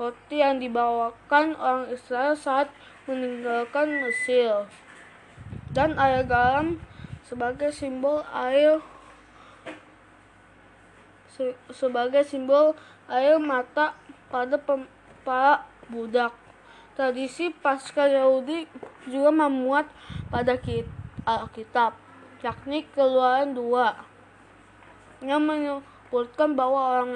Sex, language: female, Indonesian